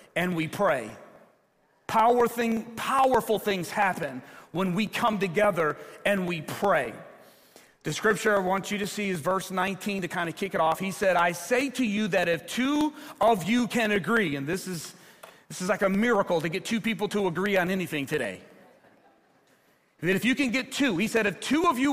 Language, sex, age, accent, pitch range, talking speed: English, male, 40-59, American, 185-230 Hz, 195 wpm